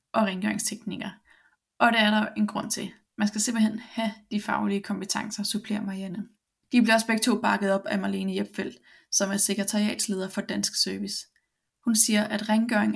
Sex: female